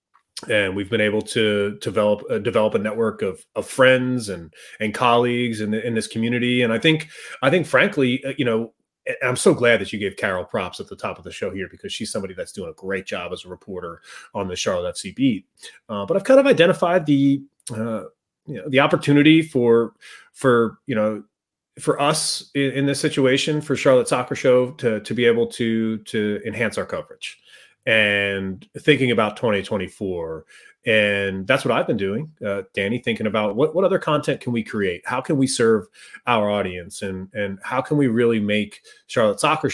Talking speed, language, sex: 200 wpm, English, male